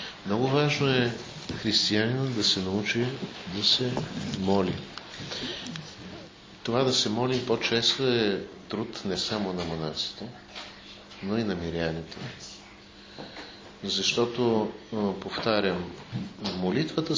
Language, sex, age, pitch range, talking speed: Bulgarian, male, 50-69, 95-125 Hz, 100 wpm